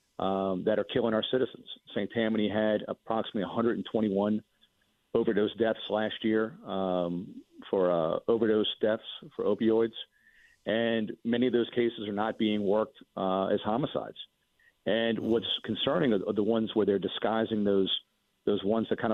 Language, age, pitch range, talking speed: English, 50-69, 100-115 Hz, 150 wpm